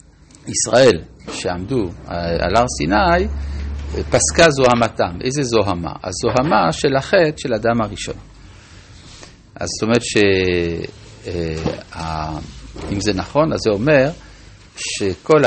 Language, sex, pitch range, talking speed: Hebrew, male, 95-135 Hz, 100 wpm